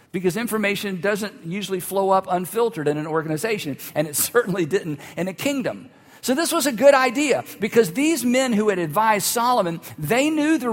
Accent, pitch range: American, 150-225 Hz